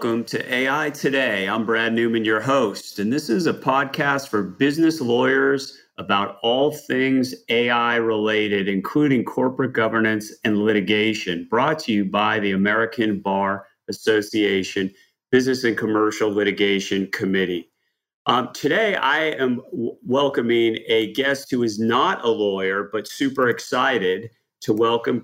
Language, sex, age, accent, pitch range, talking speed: English, male, 40-59, American, 105-130 Hz, 135 wpm